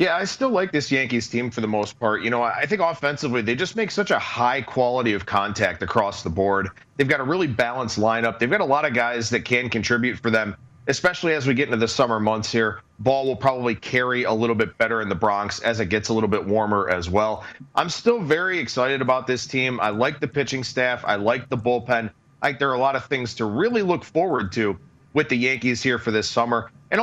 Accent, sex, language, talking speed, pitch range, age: American, male, English, 245 wpm, 115-145 Hz, 30-49